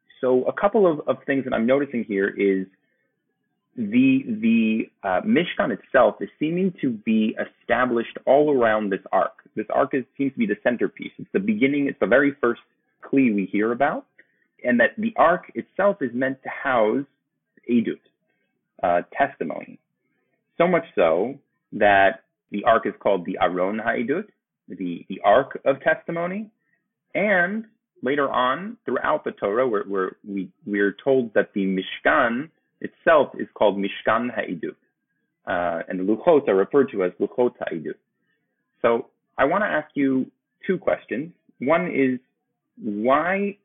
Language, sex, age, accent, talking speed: English, male, 30-49, American, 155 wpm